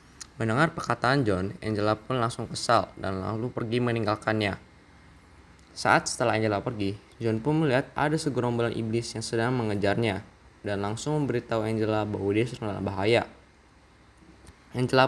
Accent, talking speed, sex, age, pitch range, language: native, 130 wpm, male, 10-29, 105-125 Hz, Indonesian